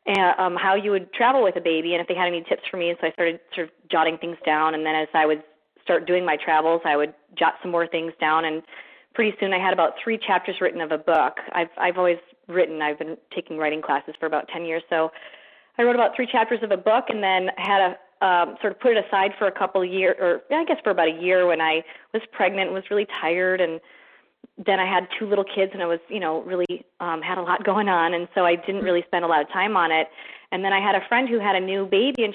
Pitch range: 170-210 Hz